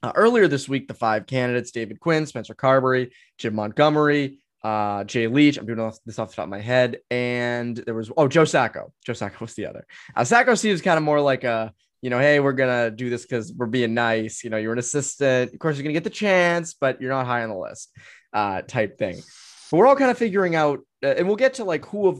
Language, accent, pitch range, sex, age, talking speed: English, American, 125-185 Hz, male, 20-39, 255 wpm